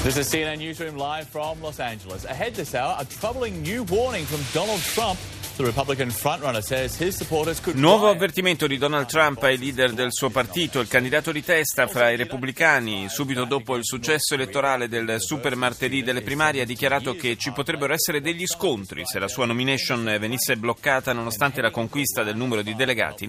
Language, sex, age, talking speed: Italian, male, 30-49, 145 wpm